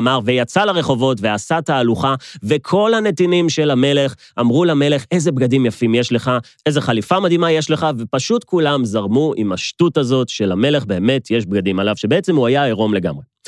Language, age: Hebrew, 30-49